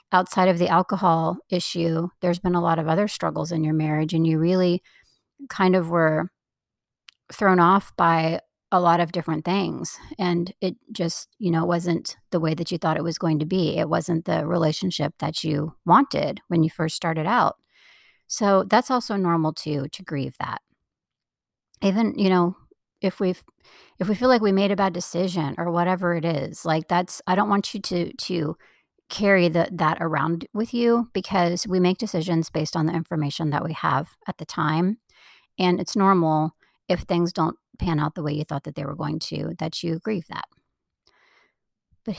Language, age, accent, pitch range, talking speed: English, 40-59, American, 160-195 Hz, 190 wpm